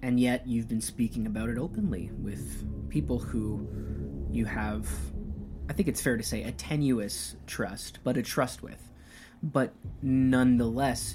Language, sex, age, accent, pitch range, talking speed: English, male, 20-39, American, 100-125 Hz, 150 wpm